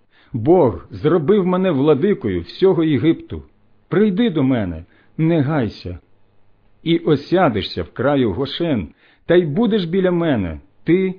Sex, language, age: male, Ukrainian, 50-69